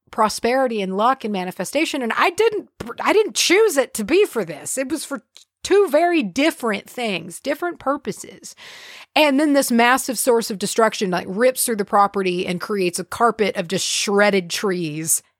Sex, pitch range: female, 185-270 Hz